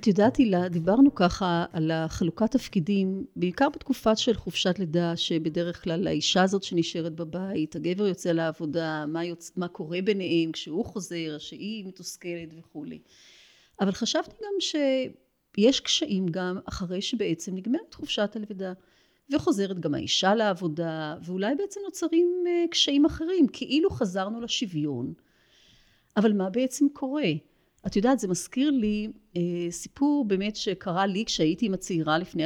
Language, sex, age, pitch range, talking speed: Hebrew, female, 30-49, 170-250 Hz, 135 wpm